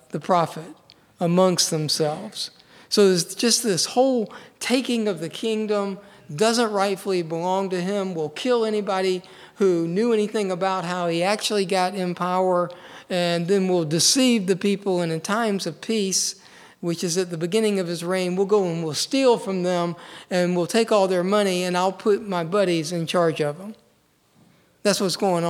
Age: 50-69